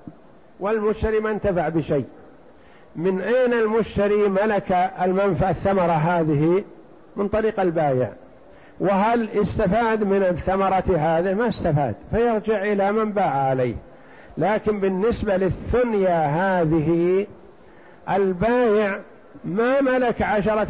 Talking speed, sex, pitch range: 100 wpm, male, 175-215 Hz